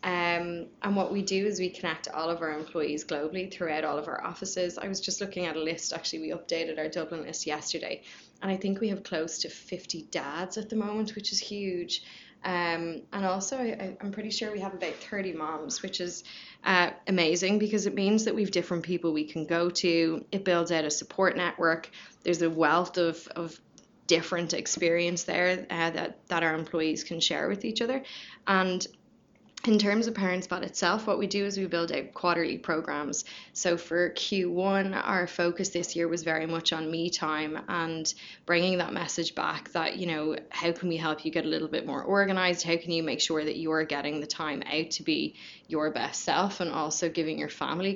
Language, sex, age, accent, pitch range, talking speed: English, female, 20-39, Irish, 165-195 Hz, 210 wpm